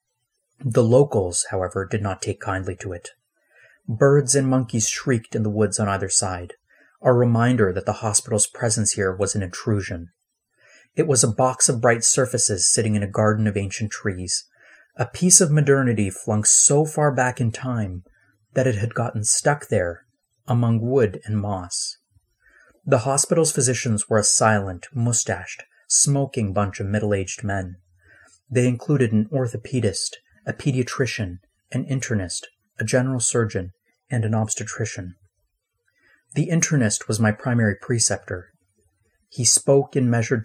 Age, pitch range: 30-49, 100-125 Hz